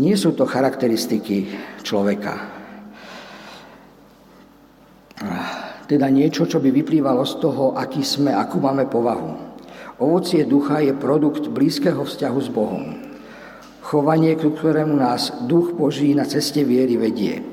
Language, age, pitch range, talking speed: Slovak, 50-69, 140-165 Hz, 115 wpm